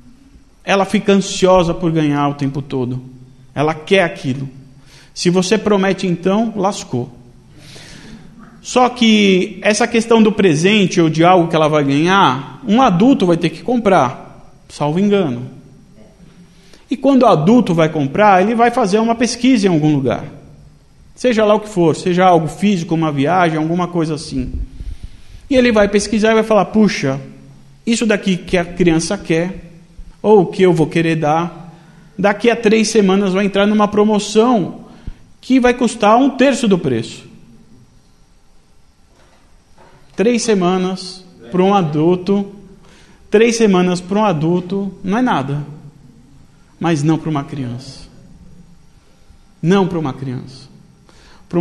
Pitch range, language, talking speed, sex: 145-200 Hz, English, 145 wpm, male